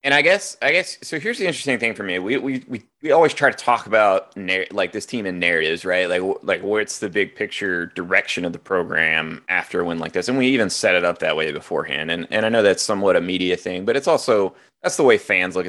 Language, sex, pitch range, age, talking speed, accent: English, male, 90-110 Hz, 30-49, 265 wpm, American